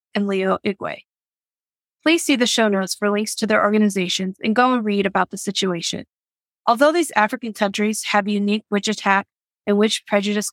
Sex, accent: female, American